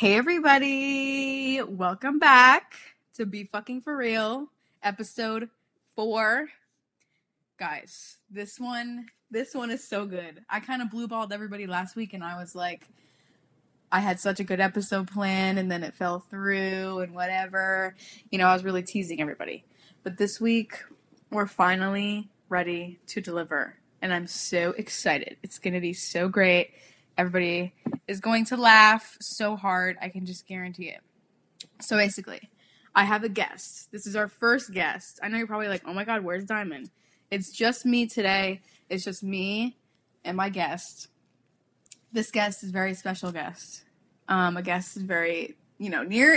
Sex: female